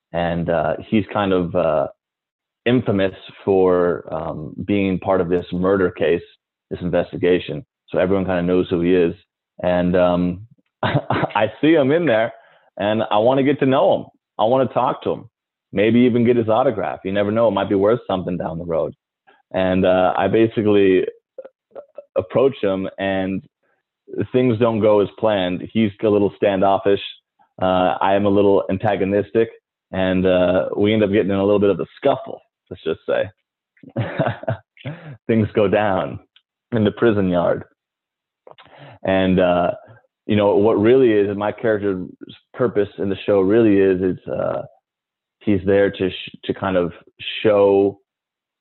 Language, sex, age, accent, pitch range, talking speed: English, male, 20-39, American, 90-105 Hz, 165 wpm